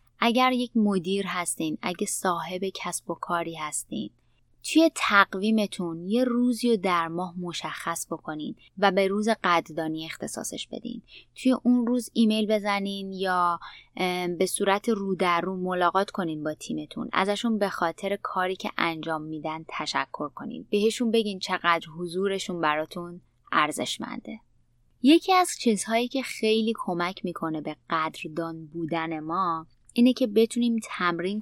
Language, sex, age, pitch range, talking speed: Persian, female, 20-39, 170-220 Hz, 135 wpm